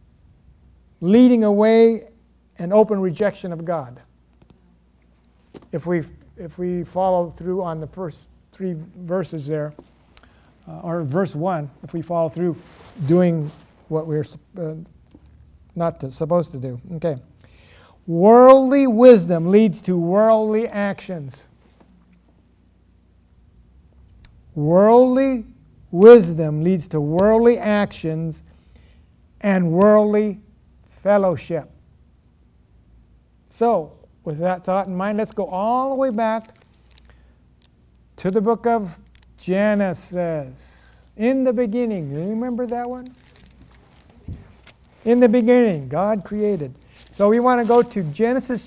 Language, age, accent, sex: English, 60-79, American, male